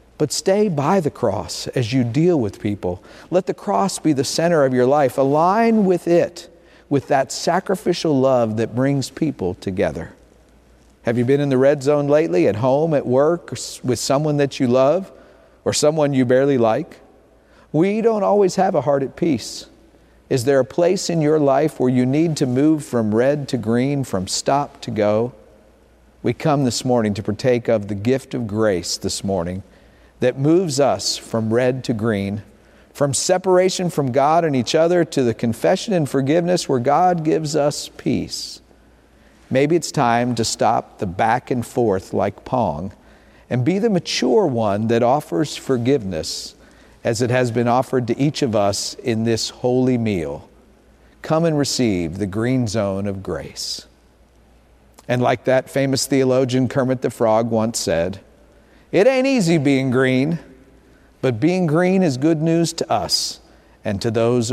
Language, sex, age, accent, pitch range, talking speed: English, male, 50-69, American, 115-155 Hz, 170 wpm